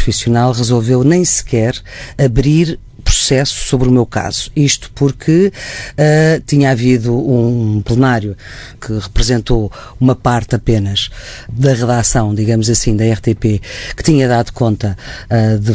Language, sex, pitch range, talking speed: Portuguese, female, 115-140 Hz, 120 wpm